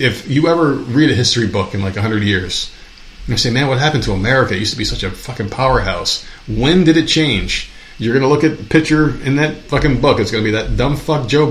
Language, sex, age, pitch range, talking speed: English, male, 40-59, 105-140 Hz, 255 wpm